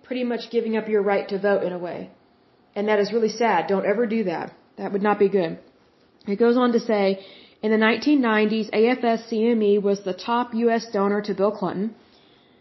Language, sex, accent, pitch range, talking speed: Hindi, female, American, 205-250 Hz, 200 wpm